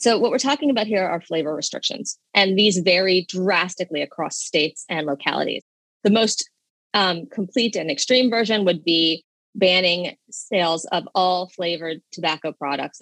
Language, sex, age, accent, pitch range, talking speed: English, female, 30-49, American, 165-215 Hz, 150 wpm